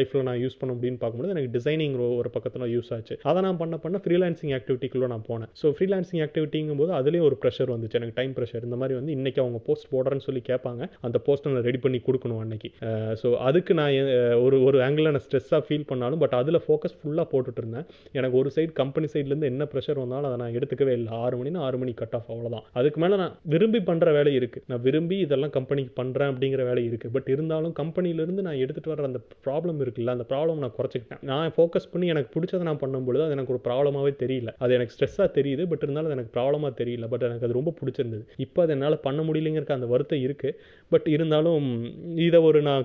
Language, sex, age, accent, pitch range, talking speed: Tamil, male, 30-49, native, 125-150 Hz, 65 wpm